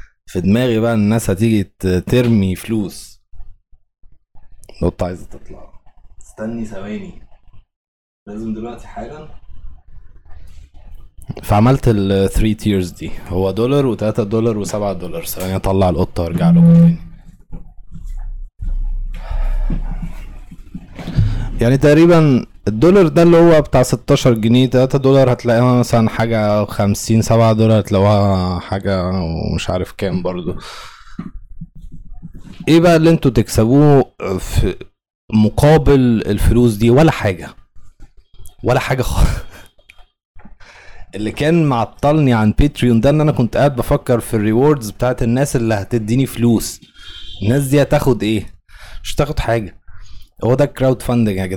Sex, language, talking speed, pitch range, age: male, Arabic, 115 wpm, 95-125 Hz, 20-39